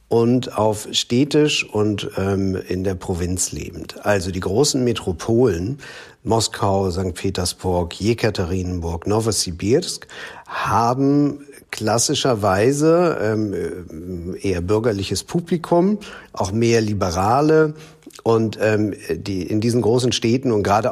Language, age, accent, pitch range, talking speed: German, 50-69, German, 95-130 Hz, 105 wpm